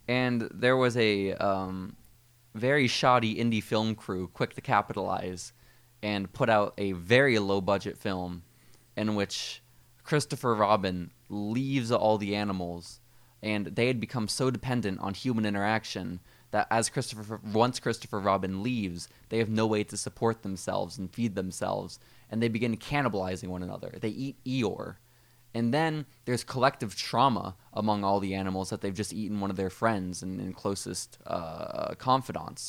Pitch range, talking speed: 95-120 Hz, 155 wpm